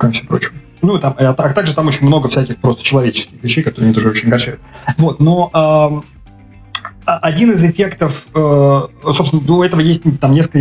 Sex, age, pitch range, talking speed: male, 30-49, 125-150 Hz, 170 wpm